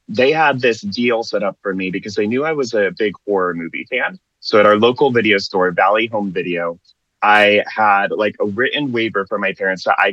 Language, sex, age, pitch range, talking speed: English, male, 30-49, 95-120 Hz, 225 wpm